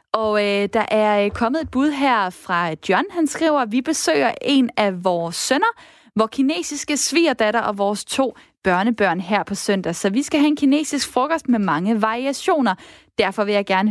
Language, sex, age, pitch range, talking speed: Danish, female, 20-39, 195-250 Hz, 185 wpm